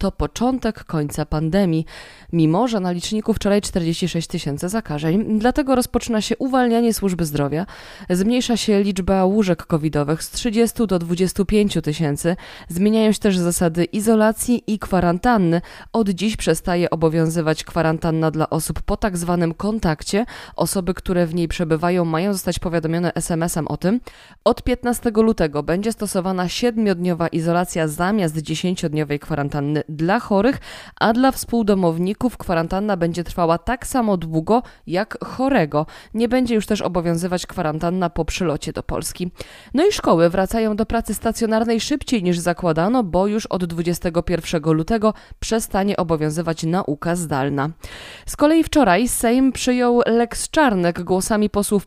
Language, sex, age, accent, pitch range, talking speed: Polish, female, 20-39, native, 170-225 Hz, 140 wpm